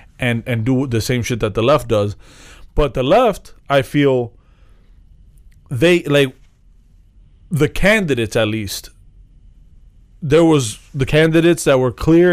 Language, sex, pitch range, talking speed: English, male, 115-160 Hz, 135 wpm